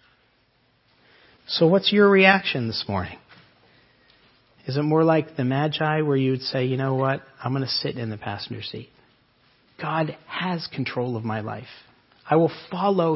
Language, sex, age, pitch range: English, male, 40-59, 130-160 Hz